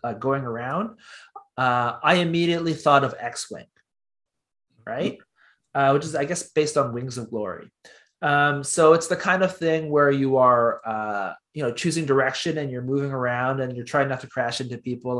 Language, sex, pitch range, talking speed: English, male, 125-155 Hz, 185 wpm